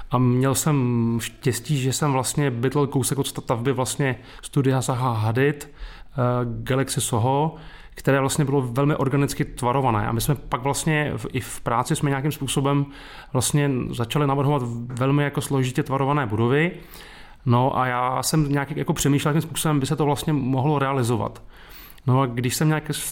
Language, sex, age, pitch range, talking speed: Czech, male, 30-49, 130-150 Hz, 170 wpm